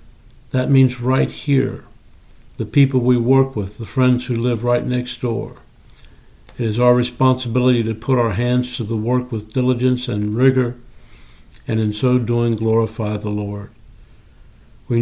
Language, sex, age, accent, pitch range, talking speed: English, male, 60-79, American, 110-125 Hz, 155 wpm